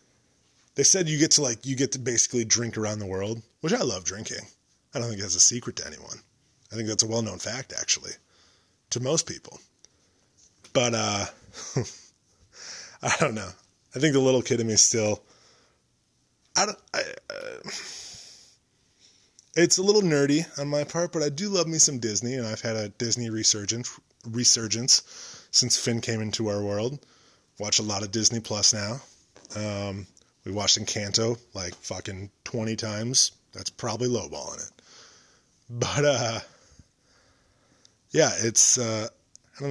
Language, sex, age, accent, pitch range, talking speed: English, male, 20-39, American, 105-130 Hz, 160 wpm